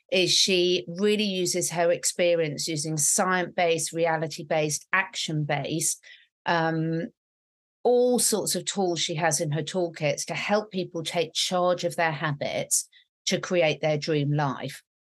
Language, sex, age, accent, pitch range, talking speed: English, female, 40-59, British, 160-190 Hz, 130 wpm